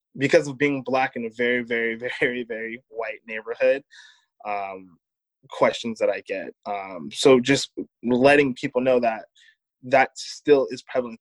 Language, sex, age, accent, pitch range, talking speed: English, male, 20-39, American, 115-140 Hz, 150 wpm